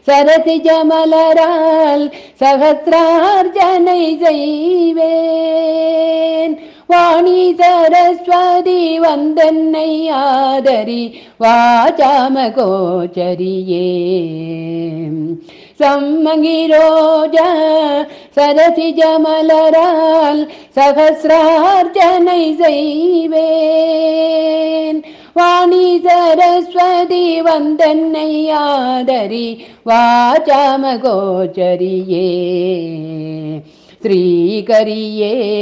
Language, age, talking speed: Tamil, 50-69, 30 wpm